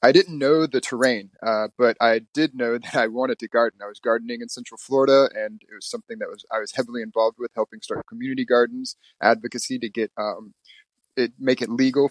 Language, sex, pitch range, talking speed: English, male, 110-125 Hz, 220 wpm